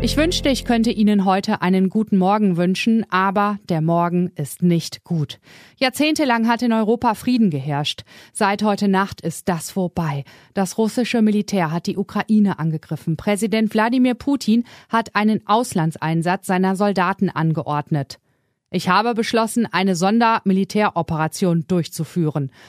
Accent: German